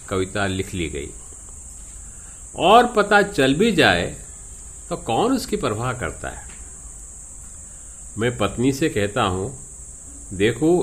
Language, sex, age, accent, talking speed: Hindi, male, 50-69, native, 115 wpm